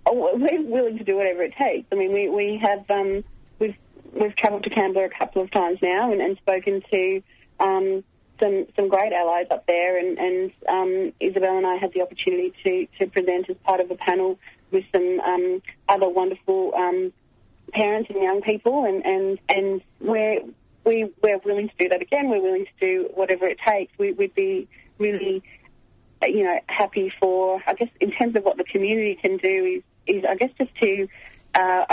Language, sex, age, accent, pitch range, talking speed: English, female, 30-49, Australian, 185-275 Hz, 195 wpm